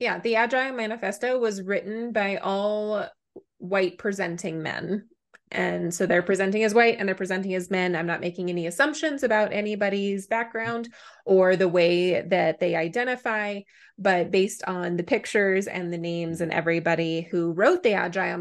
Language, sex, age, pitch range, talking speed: English, female, 20-39, 175-220 Hz, 165 wpm